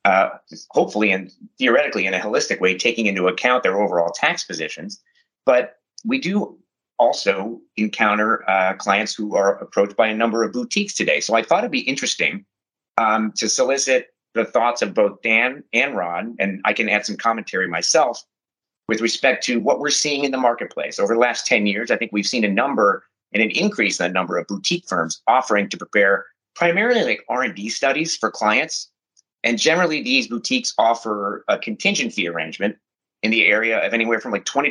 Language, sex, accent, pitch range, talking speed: English, male, American, 100-170 Hz, 190 wpm